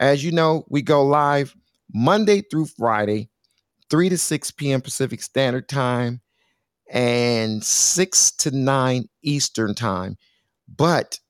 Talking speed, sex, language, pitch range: 120 wpm, male, English, 120-160 Hz